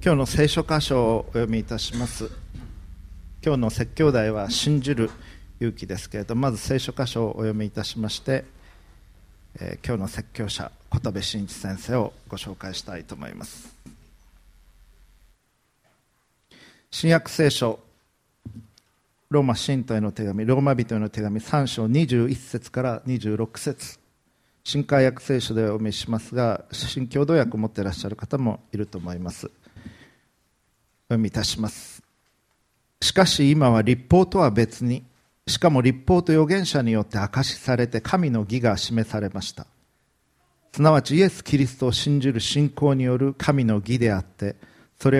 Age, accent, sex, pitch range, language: 40-59, native, male, 105-135 Hz, Japanese